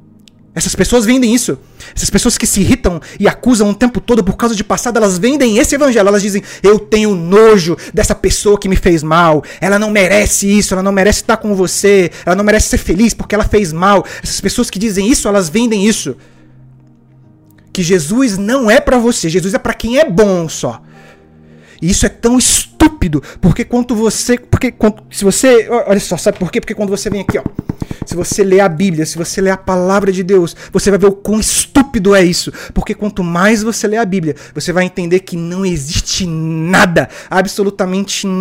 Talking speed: 205 wpm